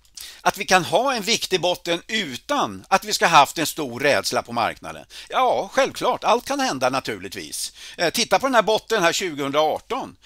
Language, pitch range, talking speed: Swedish, 140-195 Hz, 180 wpm